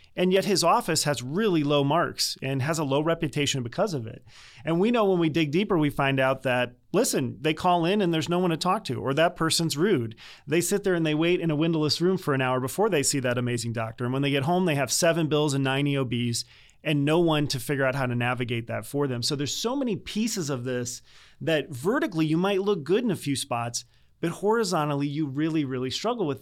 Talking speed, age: 250 wpm, 30-49